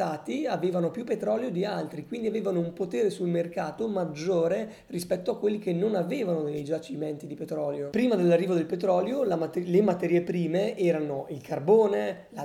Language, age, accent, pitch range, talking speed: Italian, 20-39, native, 155-190 Hz, 160 wpm